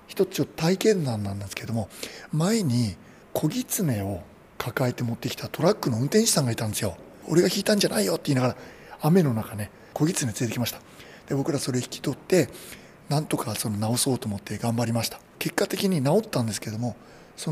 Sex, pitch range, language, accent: male, 120-170 Hz, Japanese, native